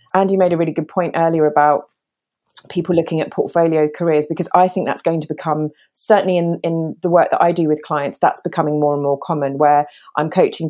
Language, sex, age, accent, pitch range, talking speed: English, female, 30-49, British, 150-185 Hz, 220 wpm